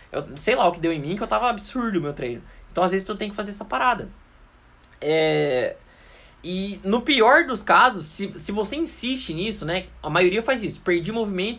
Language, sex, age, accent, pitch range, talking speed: Portuguese, male, 20-39, Brazilian, 160-220 Hz, 215 wpm